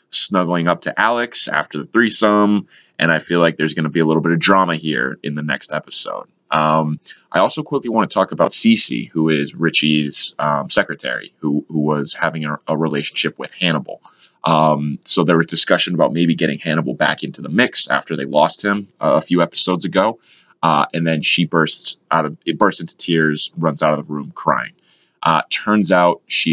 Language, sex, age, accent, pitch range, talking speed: English, male, 20-39, American, 75-95 Hz, 205 wpm